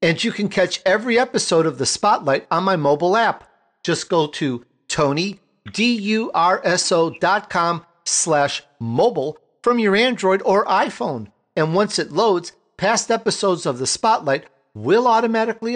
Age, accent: 50-69, American